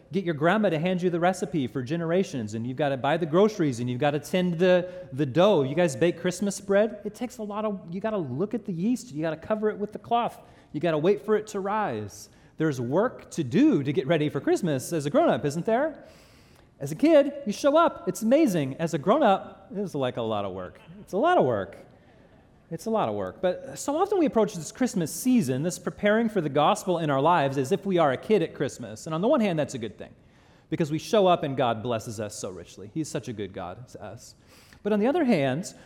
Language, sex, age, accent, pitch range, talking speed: English, male, 30-49, American, 145-205 Hz, 260 wpm